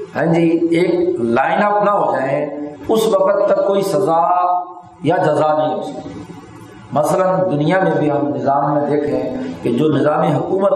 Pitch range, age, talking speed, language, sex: 145-185 Hz, 50-69, 165 wpm, Urdu, male